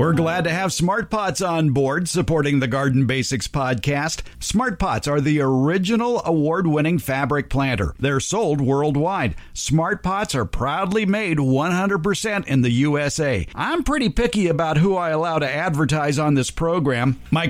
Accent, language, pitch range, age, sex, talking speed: American, English, 130-175 Hz, 50-69, male, 145 wpm